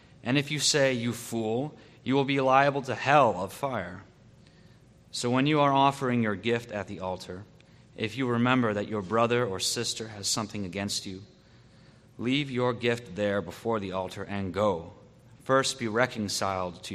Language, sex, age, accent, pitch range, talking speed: English, male, 30-49, American, 100-130 Hz, 175 wpm